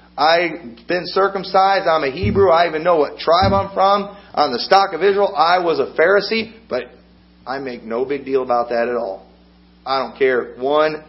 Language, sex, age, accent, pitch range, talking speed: English, male, 40-59, American, 135-205 Hz, 195 wpm